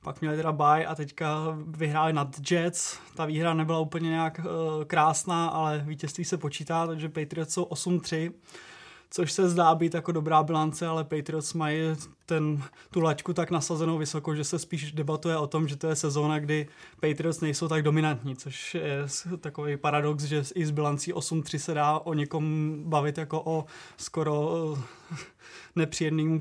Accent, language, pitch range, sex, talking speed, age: native, Czech, 150-165 Hz, male, 170 wpm, 20-39